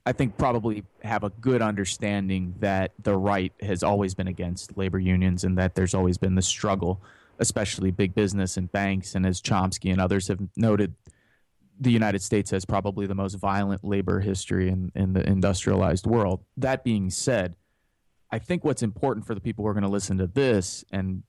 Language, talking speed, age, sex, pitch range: English, 190 wpm, 30-49, male, 95-115 Hz